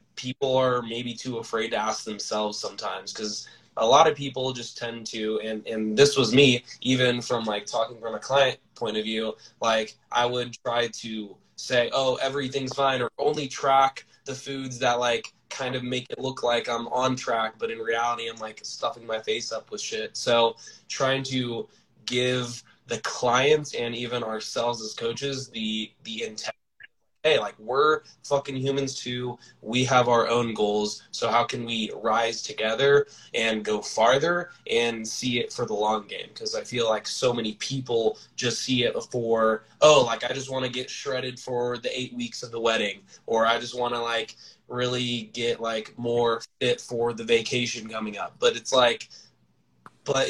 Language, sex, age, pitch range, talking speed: English, male, 20-39, 115-130 Hz, 185 wpm